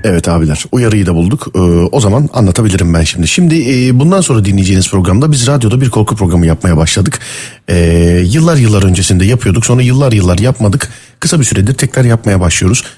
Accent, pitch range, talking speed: native, 100-135 Hz, 180 wpm